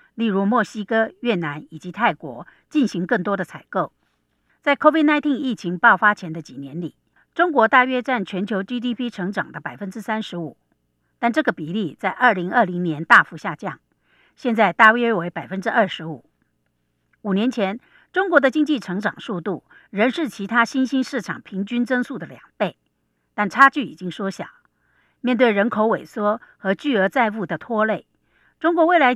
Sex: female